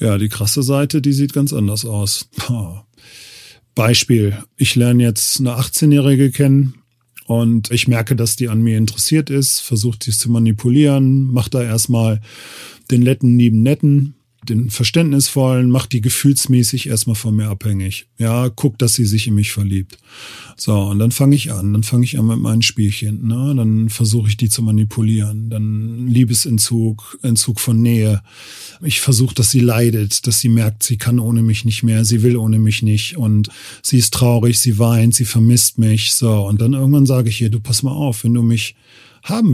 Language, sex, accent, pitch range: German, male, German, 110-120 Hz